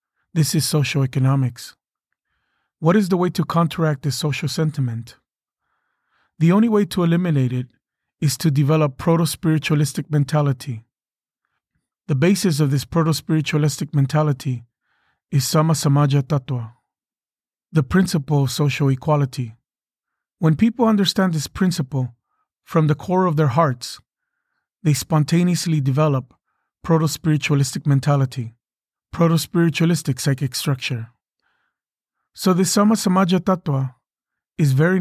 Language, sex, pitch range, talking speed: English, male, 135-170 Hz, 110 wpm